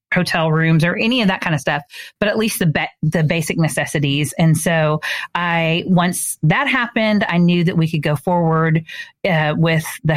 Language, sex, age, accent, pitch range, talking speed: English, female, 40-59, American, 160-215 Hz, 195 wpm